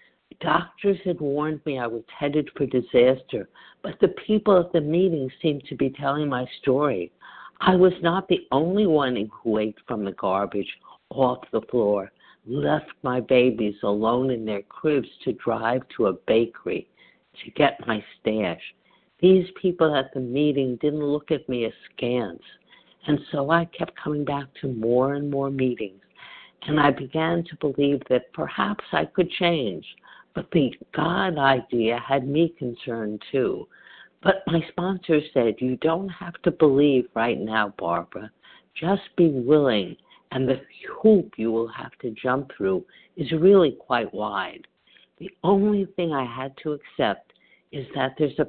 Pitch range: 125-165 Hz